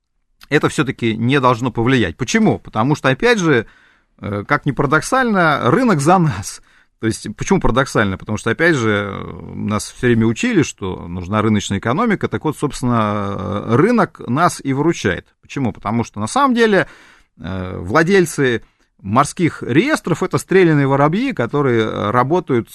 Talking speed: 140 wpm